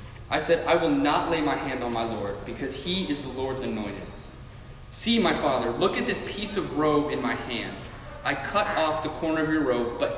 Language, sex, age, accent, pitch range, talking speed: English, male, 20-39, American, 120-160 Hz, 225 wpm